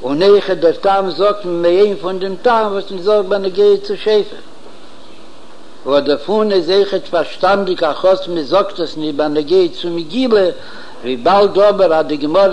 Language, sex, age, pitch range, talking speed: Hebrew, male, 60-79, 175-200 Hz, 155 wpm